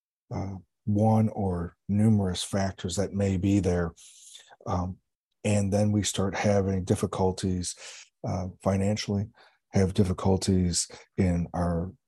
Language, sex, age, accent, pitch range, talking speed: English, male, 40-59, American, 90-105 Hz, 110 wpm